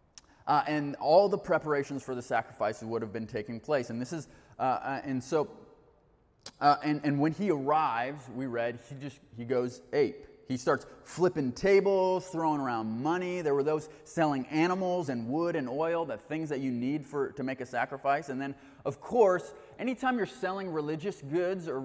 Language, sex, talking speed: English, male, 190 wpm